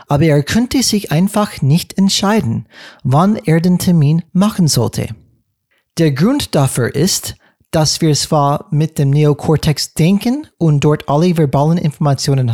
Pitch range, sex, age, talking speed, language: 145-185 Hz, male, 40-59, 140 wpm, German